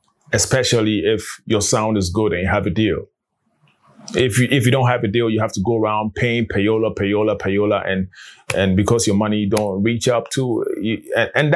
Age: 20-39